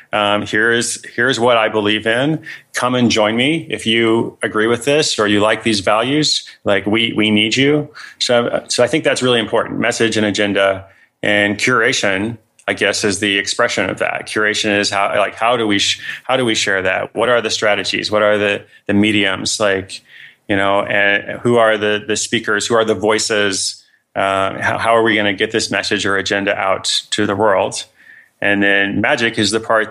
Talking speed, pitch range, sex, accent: 205 wpm, 100-115 Hz, male, American